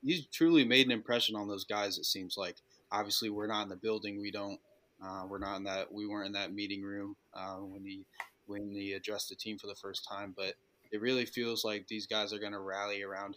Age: 20-39